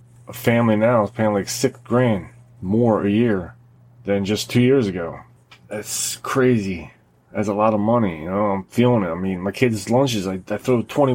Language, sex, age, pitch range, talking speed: English, male, 20-39, 100-120 Hz, 200 wpm